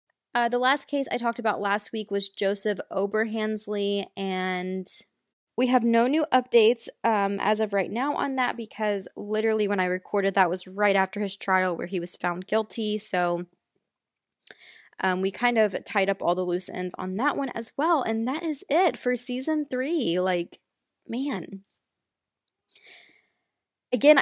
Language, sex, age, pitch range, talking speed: English, female, 20-39, 195-235 Hz, 165 wpm